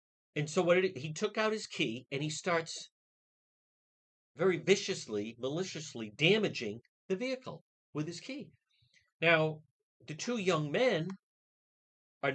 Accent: American